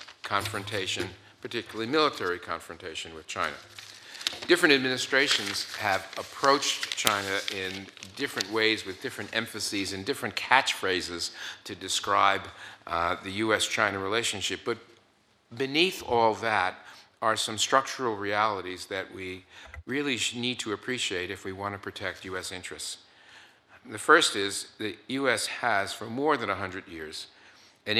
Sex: male